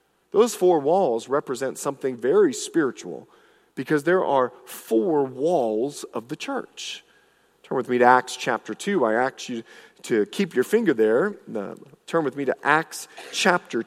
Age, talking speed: 40-59, 155 wpm